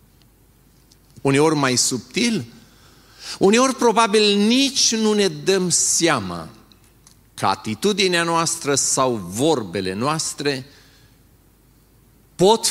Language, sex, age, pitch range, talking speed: Romanian, male, 40-59, 125-170 Hz, 80 wpm